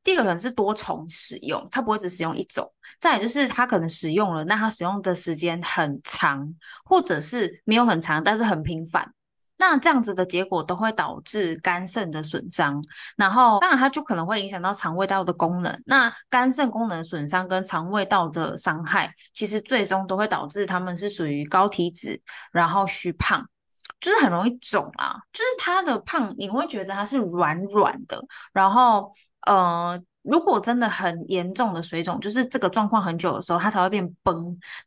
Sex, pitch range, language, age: female, 175-240 Hz, Chinese, 10-29